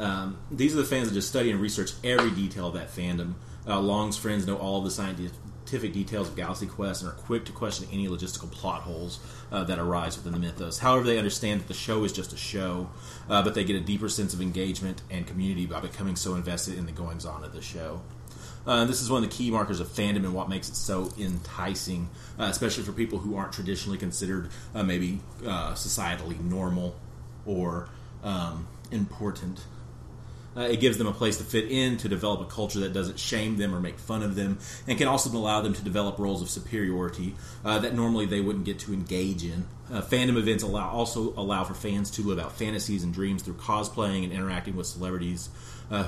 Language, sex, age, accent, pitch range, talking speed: English, male, 30-49, American, 90-110 Hz, 215 wpm